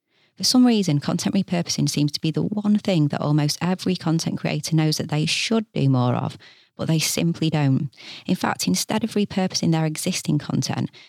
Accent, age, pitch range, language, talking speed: British, 30-49, 145-175 Hz, English, 190 wpm